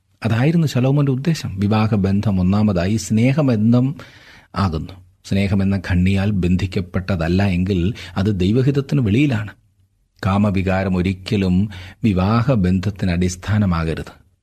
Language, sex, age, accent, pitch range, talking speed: Malayalam, male, 40-59, native, 95-125 Hz, 65 wpm